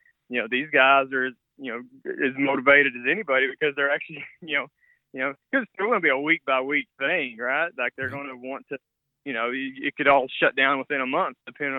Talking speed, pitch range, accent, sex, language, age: 240 wpm, 125-150 Hz, American, male, English, 20-39